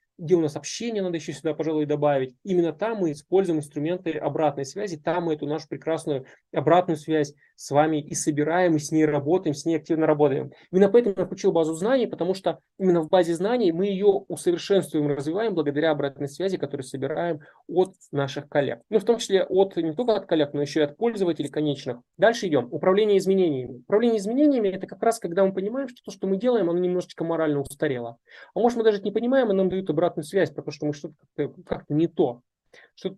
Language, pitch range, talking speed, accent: Russian, 150-195 Hz, 210 wpm, native